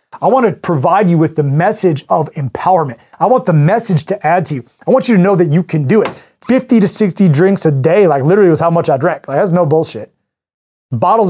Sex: male